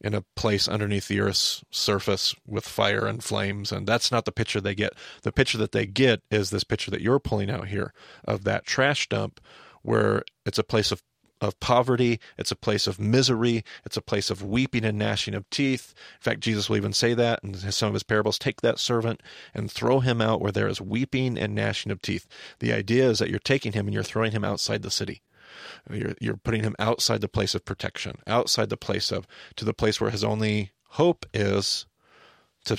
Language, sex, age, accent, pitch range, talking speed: English, male, 40-59, American, 105-125 Hz, 220 wpm